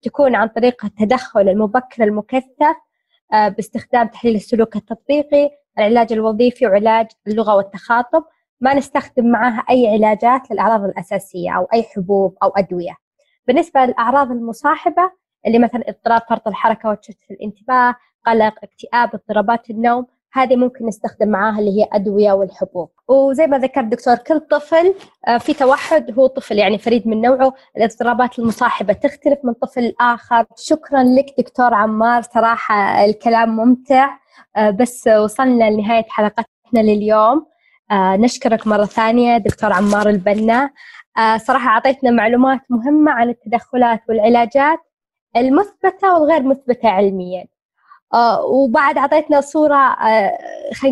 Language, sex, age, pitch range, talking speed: Arabic, female, 20-39, 220-270 Hz, 125 wpm